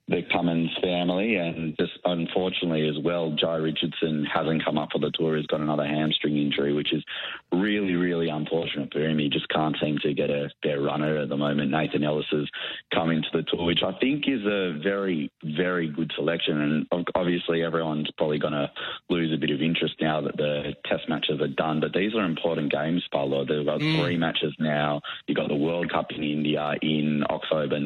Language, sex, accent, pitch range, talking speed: English, male, Australian, 75-80 Hz, 205 wpm